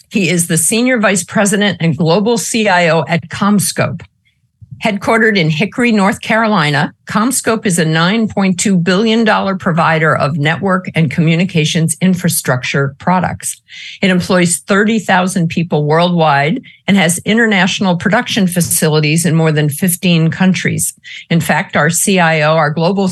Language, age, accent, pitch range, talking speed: English, 50-69, American, 160-200 Hz, 125 wpm